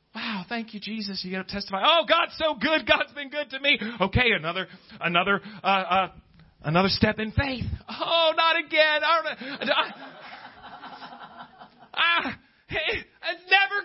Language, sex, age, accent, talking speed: English, male, 40-59, American, 145 wpm